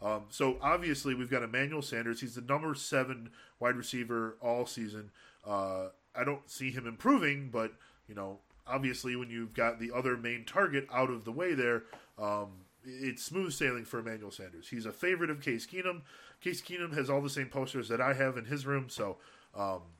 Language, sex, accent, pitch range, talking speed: English, male, American, 115-140 Hz, 195 wpm